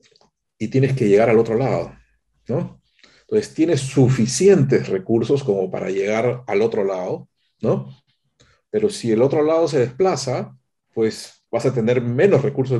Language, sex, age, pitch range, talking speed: Spanish, male, 40-59, 110-150 Hz, 150 wpm